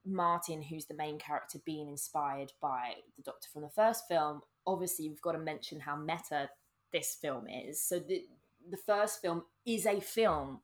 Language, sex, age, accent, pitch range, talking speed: English, female, 20-39, British, 145-180 Hz, 180 wpm